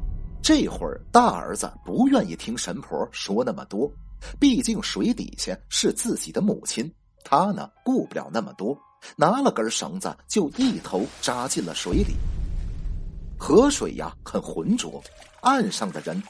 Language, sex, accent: Chinese, male, native